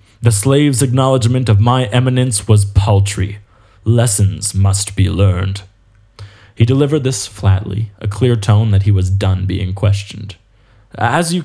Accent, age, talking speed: American, 20-39, 140 wpm